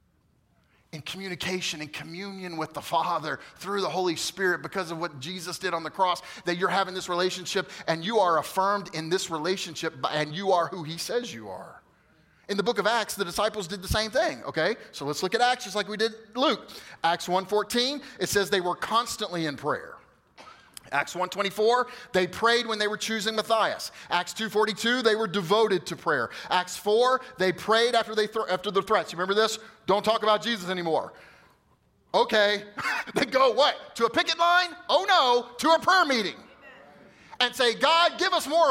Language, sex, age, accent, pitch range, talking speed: English, male, 30-49, American, 175-230 Hz, 195 wpm